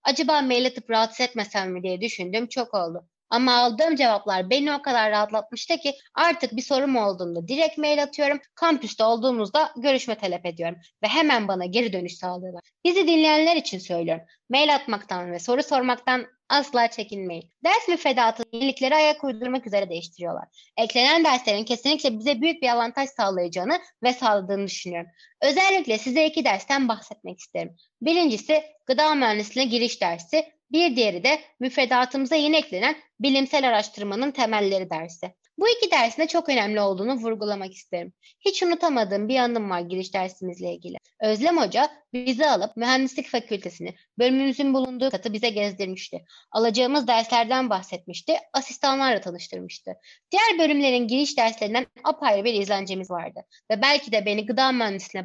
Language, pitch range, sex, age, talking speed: Turkish, 205-290 Hz, female, 30-49, 145 wpm